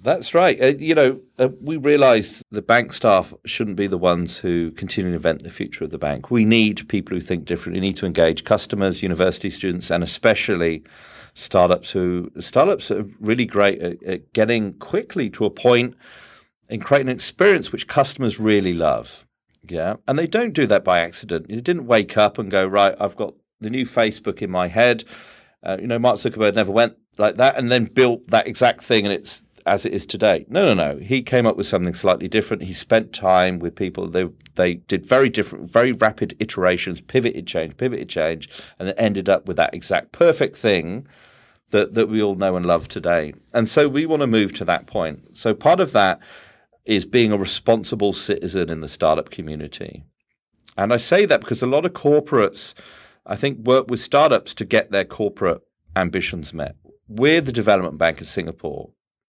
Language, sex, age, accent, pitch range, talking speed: English, male, 40-59, British, 90-125 Hz, 200 wpm